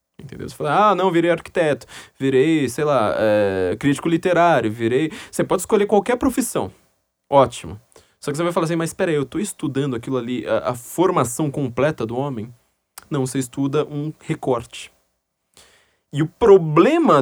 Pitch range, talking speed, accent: 125-170 Hz, 165 wpm, Brazilian